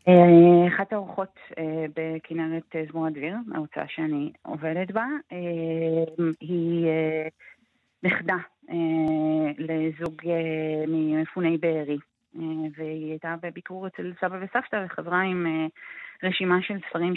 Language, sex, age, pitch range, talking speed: Hebrew, female, 30-49, 155-180 Hz, 85 wpm